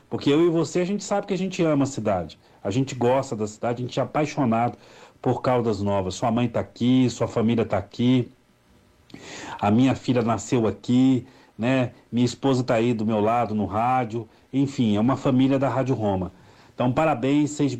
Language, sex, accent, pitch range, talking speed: Portuguese, male, Brazilian, 115-140 Hz, 195 wpm